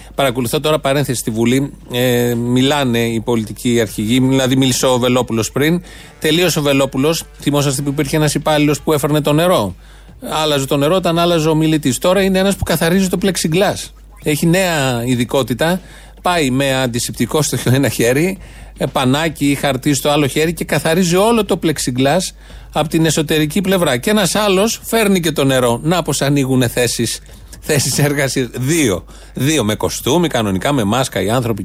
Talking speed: 165 wpm